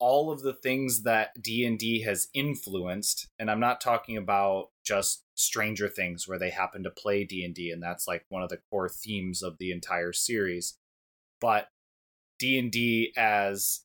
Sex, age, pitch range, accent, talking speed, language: male, 20-39, 95-115 Hz, American, 185 wpm, English